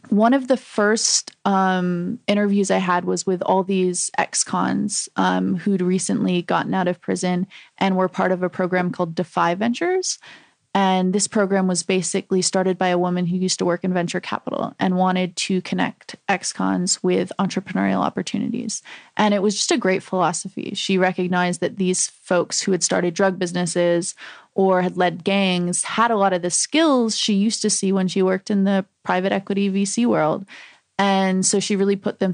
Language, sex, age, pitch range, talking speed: English, female, 20-39, 180-200 Hz, 180 wpm